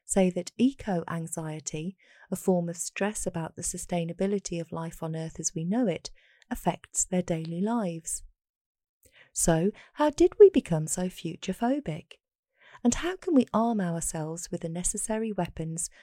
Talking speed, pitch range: 145 wpm, 165-215 Hz